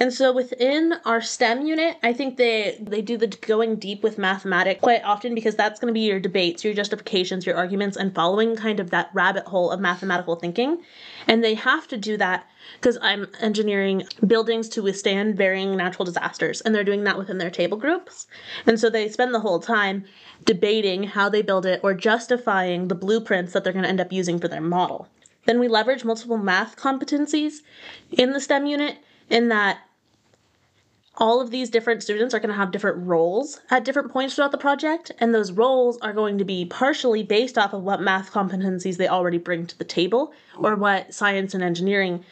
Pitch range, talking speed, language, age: 190-235 Hz, 200 wpm, English, 20-39